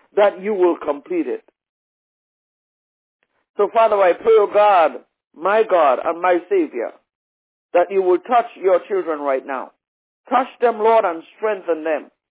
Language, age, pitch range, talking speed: English, 60-79, 195-255 Hz, 150 wpm